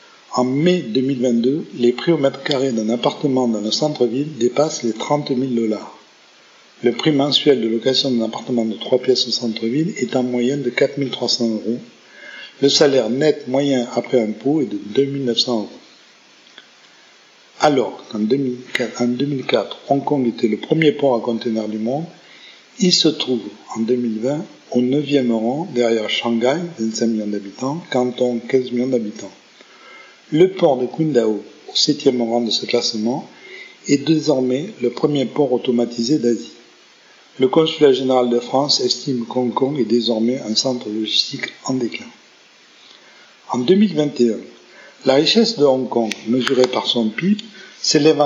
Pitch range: 120-145 Hz